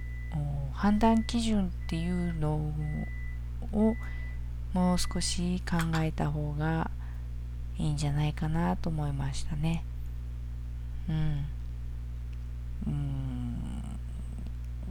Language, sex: Japanese, female